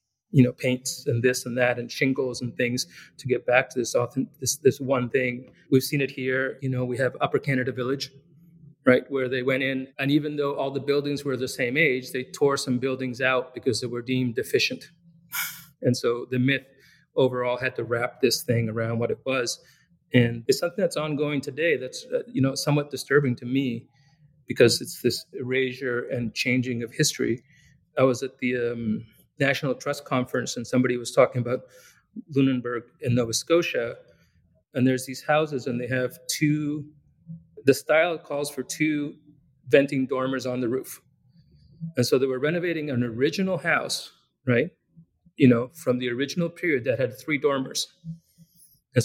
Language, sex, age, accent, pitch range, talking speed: English, male, 40-59, American, 125-150 Hz, 180 wpm